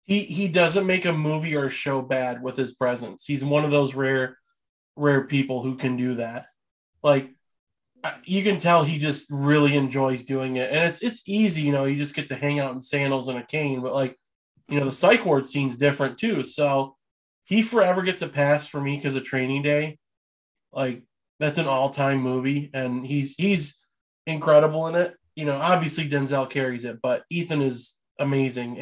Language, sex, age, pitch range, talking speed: English, male, 20-39, 135-175 Hz, 195 wpm